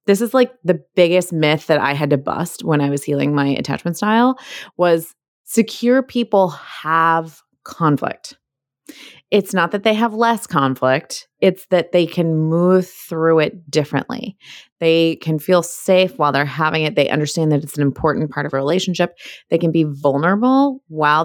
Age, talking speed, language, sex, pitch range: 20-39, 170 wpm, English, female, 155-215 Hz